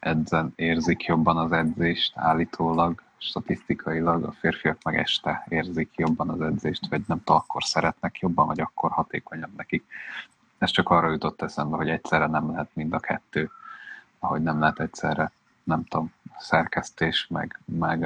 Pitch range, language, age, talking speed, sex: 80-85 Hz, Hungarian, 30-49, 155 wpm, male